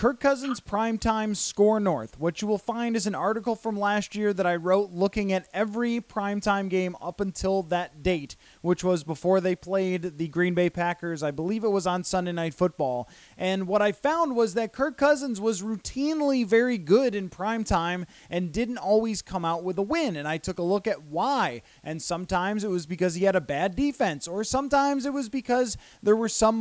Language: English